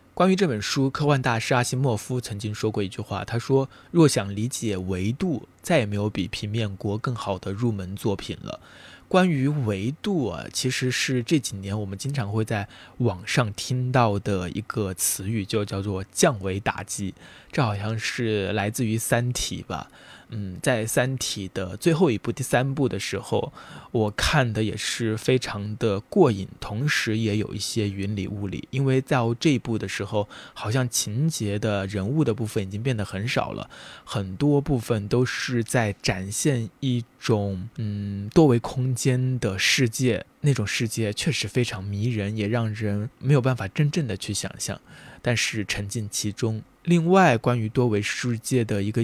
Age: 20-39